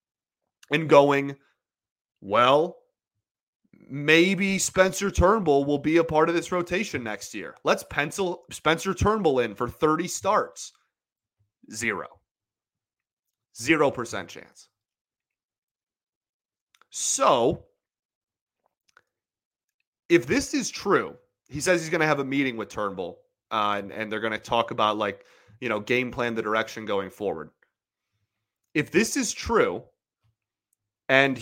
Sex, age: male, 30-49